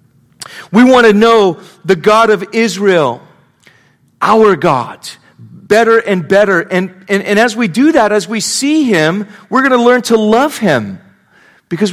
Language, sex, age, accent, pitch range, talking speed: English, male, 40-59, American, 145-200 Hz, 160 wpm